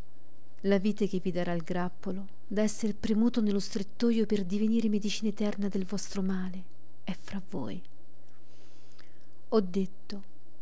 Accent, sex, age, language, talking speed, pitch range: native, female, 40-59, Italian, 135 wpm, 190-215 Hz